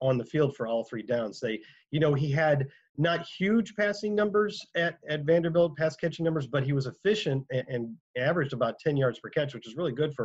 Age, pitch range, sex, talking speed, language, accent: 40-59, 115-145 Hz, male, 230 wpm, English, American